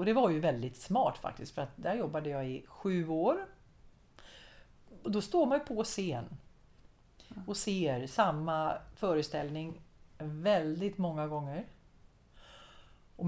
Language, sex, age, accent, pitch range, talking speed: Swedish, female, 40-59, native, 145-195 Hz, 130 wpm